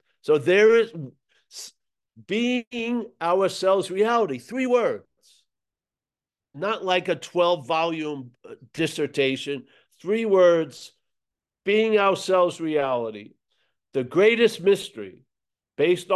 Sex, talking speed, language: male, 85 wpm, English